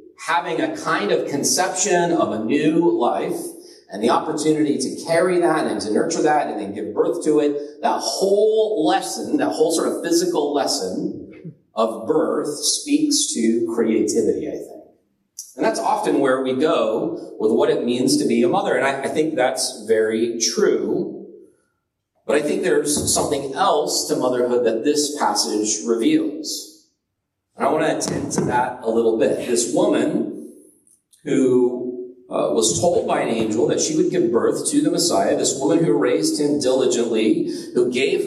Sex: male